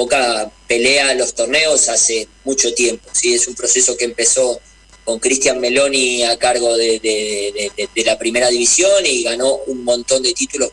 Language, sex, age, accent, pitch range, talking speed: Spanish, male, 20-39, Argentinian, 120-155 Hz, 160 wpm